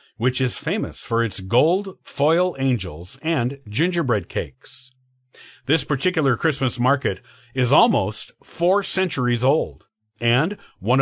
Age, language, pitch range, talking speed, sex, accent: 50-69, English, 120-165 Hz, 120 wpm, male, American